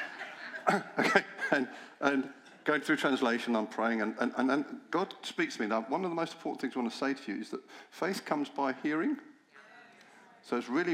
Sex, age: male, 50-69